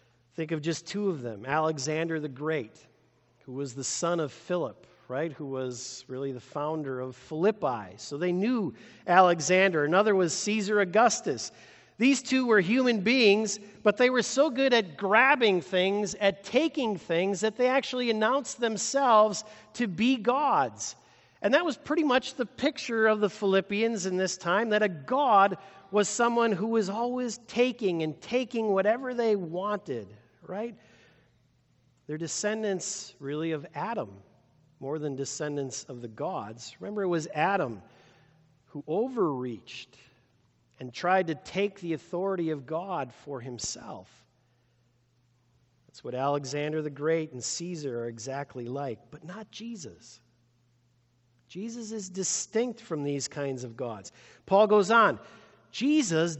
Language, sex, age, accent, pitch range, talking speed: English, male, 50-69, American, 140-220 Hz, 145 wpm